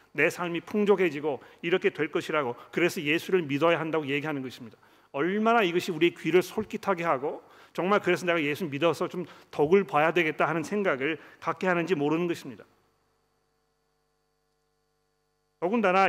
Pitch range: 150-180 Hz